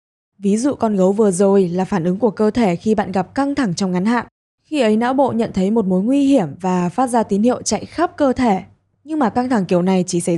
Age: 10-29